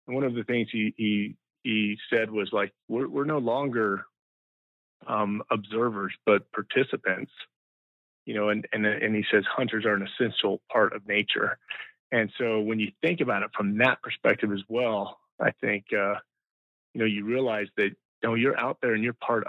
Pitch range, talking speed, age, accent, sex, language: 100-115 Hz, 190 wpm, 30-49, American, male, English